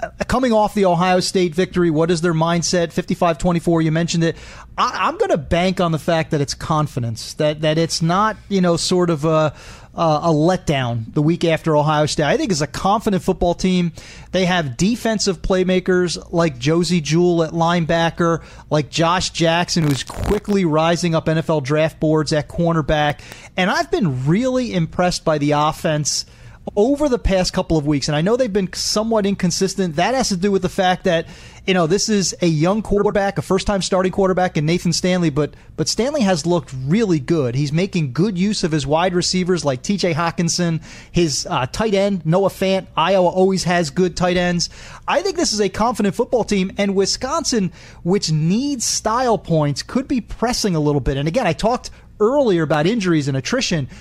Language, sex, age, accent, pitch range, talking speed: English, male, 30-49, American, 160-205 Hz, 190 wpm